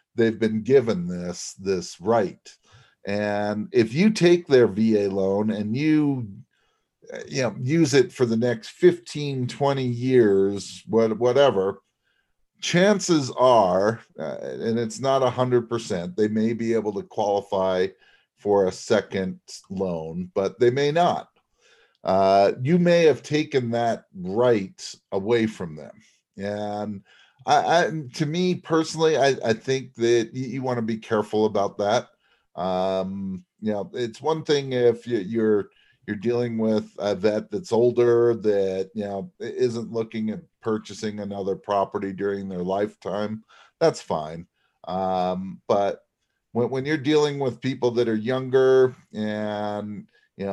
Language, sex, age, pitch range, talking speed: English, male, 50-69, 100-130 Hz, 140 wpm